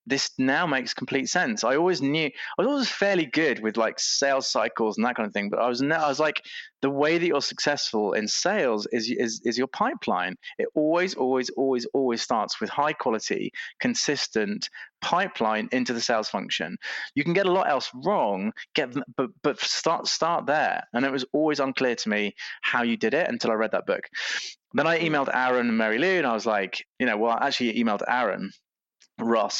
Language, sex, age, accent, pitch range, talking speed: English, male, 20-39, British, 115-145 Hz, 210 wpm